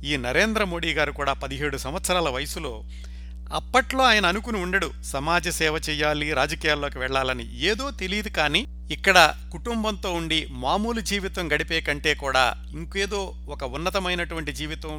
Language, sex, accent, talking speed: Telugu, male, native, 130 wpm